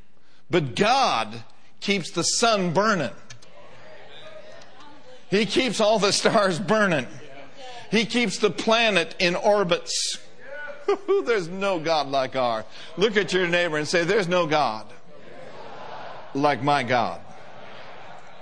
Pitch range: 150-215 Hz